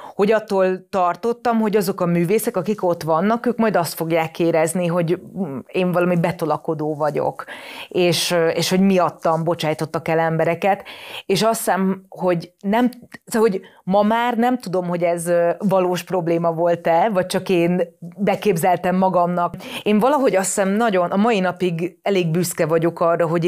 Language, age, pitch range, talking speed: Hungarian, 30-49, 170-210 Hz, 155 wpm